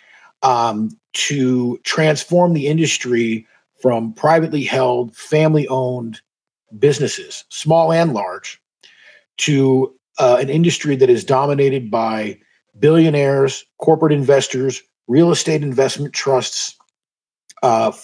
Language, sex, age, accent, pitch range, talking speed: English, male, 40-59, American, 130-160 Hz, 100 wpm